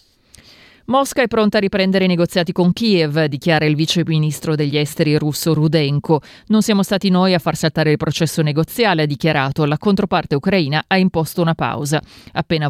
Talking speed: 175 wpm